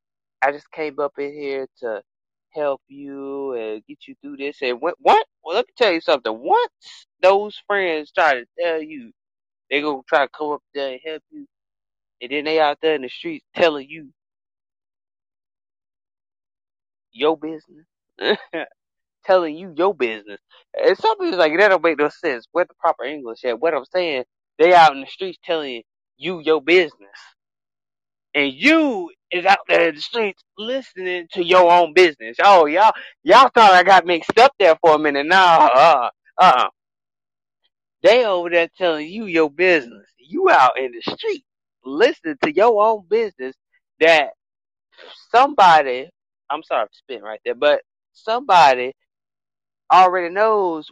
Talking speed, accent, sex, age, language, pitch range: 165 wpm, American, male, 20-39, English, 140-205 Hz